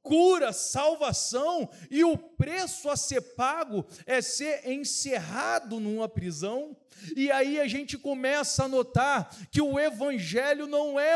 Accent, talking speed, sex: Brazilian, 135 wpm, male